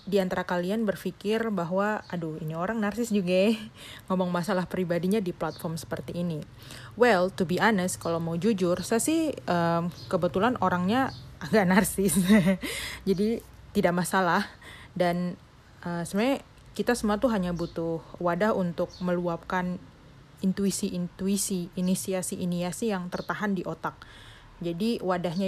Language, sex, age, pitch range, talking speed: Indonesian, female, 30-49, 170-205 Hz, 120 wpm